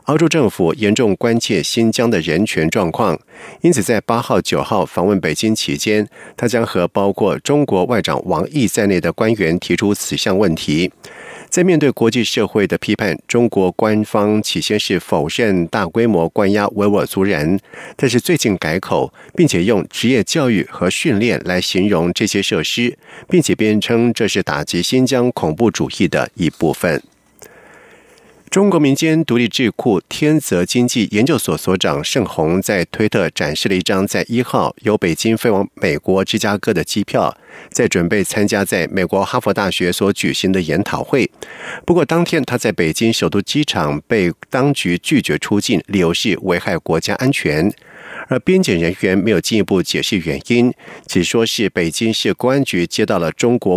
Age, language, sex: 50-69, German, male